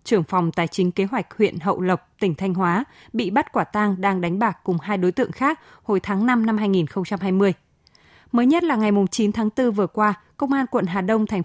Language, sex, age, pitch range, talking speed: Vietnamese, female, 20-39, 185-240 Hz, 230 wpm